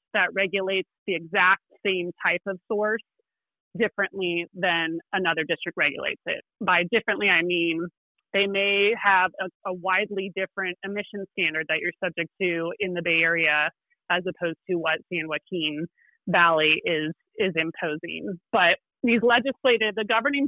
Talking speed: 145 wpm